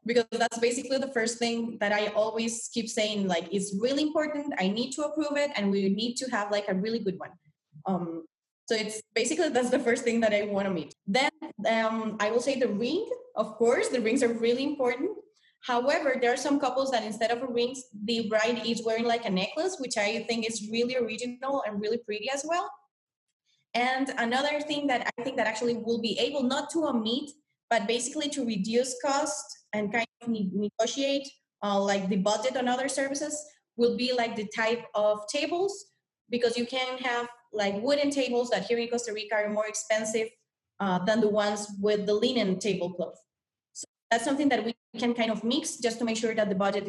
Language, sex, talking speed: English, female, 205 wpm